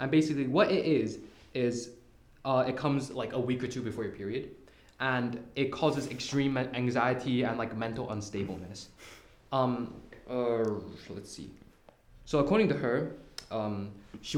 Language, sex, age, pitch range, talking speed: English, male, 20-39, 110-130 Hz, 150 wpm